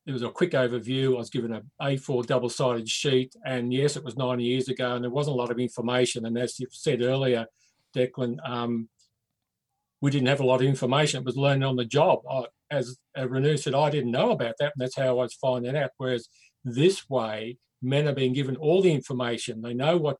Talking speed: 225 wpm